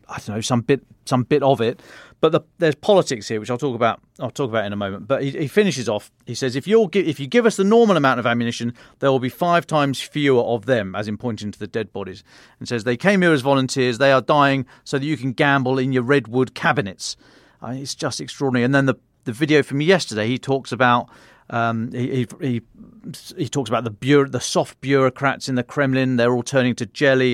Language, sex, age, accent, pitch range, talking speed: English, male, 40-59, British, 120-145 Hz, 245 wpm